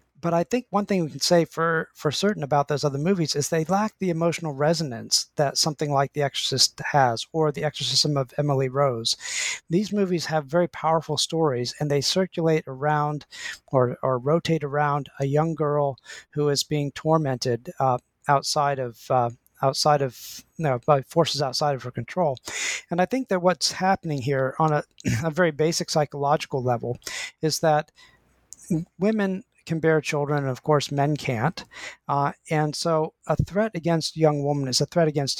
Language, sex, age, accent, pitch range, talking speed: English, male, 40-59, American, 140-165 Hz, 180 wpm